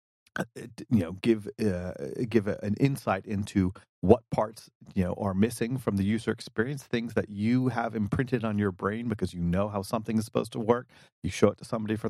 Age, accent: 30-49, American